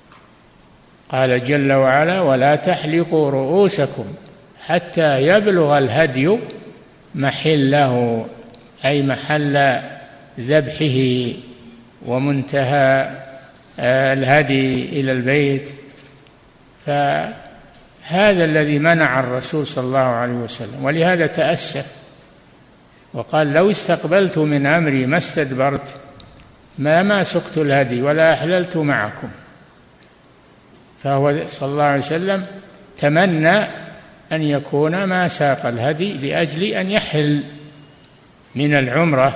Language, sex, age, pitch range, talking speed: Arabic, male, 60-79, 135-165 Hz, 85 wpm